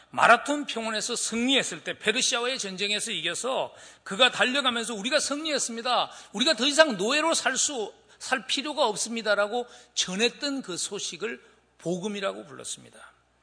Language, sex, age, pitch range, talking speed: English, male, 40-59, 165-240 Hz, 105 wpm